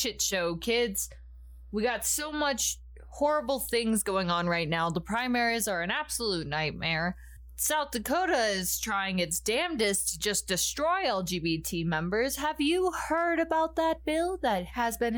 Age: 20-39